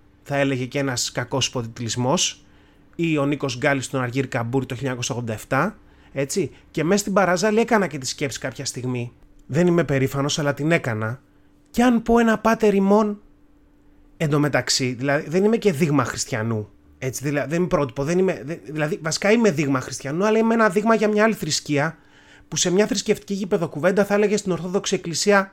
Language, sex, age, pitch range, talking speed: Greek, male, 30-49, 130-200 Hz, 170 wpm